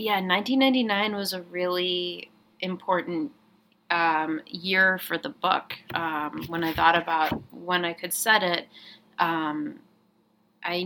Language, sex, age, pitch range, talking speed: English, female, 20-39, 160-190 Hz, 125 wpm